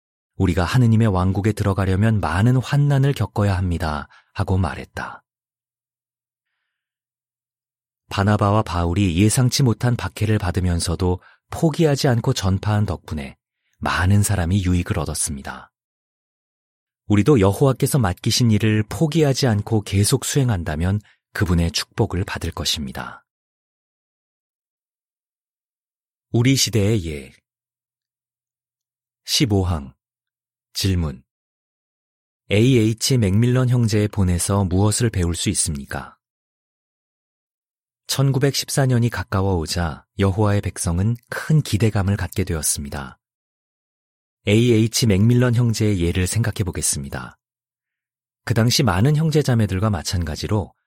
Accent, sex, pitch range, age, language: native, male, 90-120 Hz, 40-59, Korean